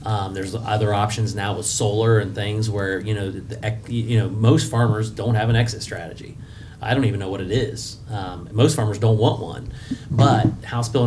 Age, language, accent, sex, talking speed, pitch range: 30-49, English, American, male, 210 wpm, 105-115 Hz